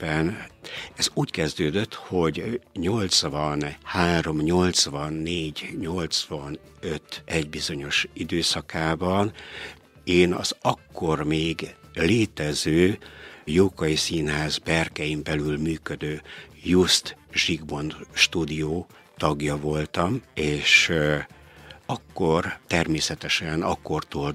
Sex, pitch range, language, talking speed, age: male, 75-85 Hz, Hungarian, 70 wpm, 60-79